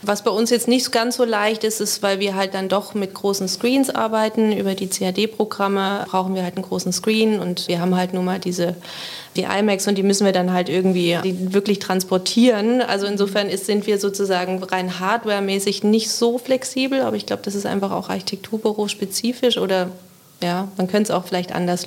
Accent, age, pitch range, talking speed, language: German, 30-49, 185-210 Hz, 200 wpm, German